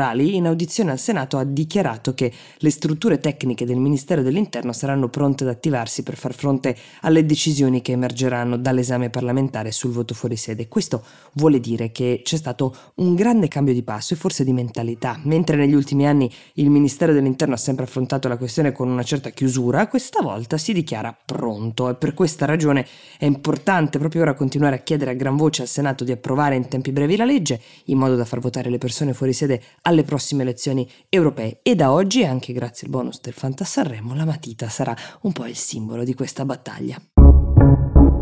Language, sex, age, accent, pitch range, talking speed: Italian, female, 20-39, native, 125-155 Hz, 190 wpm